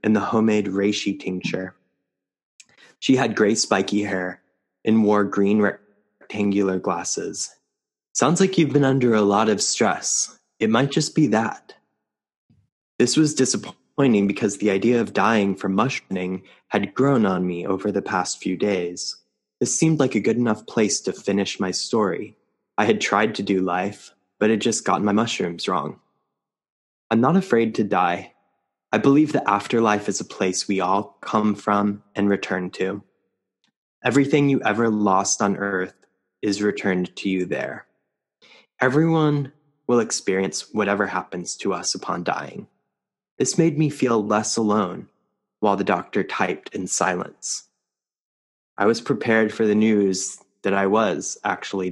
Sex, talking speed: male, 155 wpm